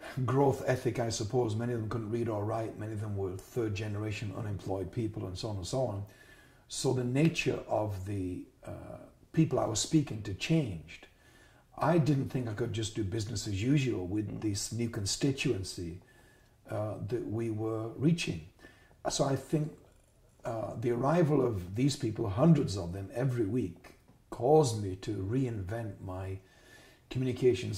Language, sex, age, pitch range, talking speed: English, male, 50-69, 105-130 Hz, 160 wpm